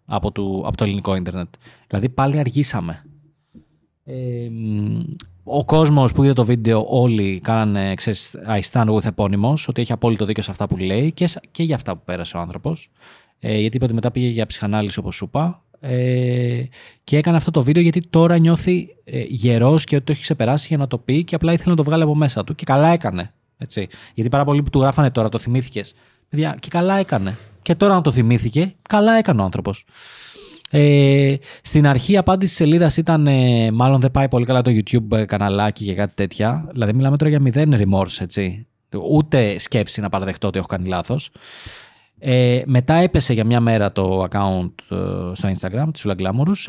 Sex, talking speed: male, 185 wpm